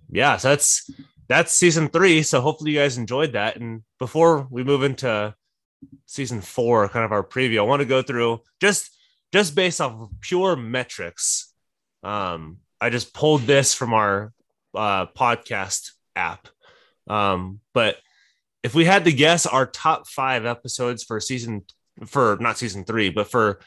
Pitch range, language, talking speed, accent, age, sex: 110-145 Hz, English, 160 wpm, American, 20-39, male